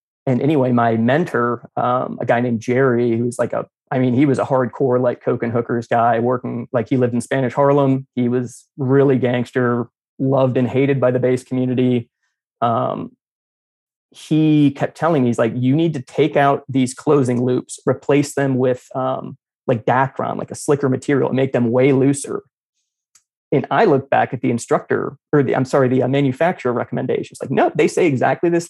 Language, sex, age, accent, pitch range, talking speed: English, male, 20-39, American, 125-140 Hz, 195 wpm